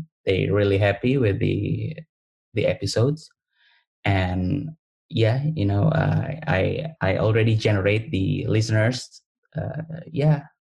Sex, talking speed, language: male, 115 wpm, English